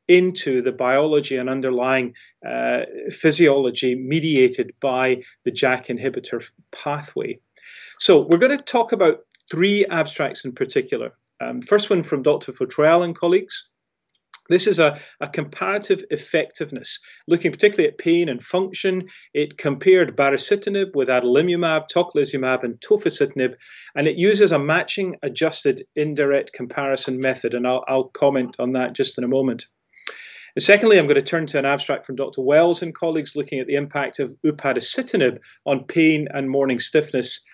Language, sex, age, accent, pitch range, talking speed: English, male, 30-49, British, 130-190 Hz, 150 wpm